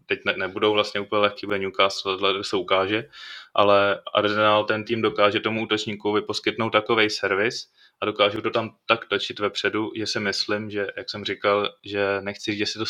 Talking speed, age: 170 wpm, 20-39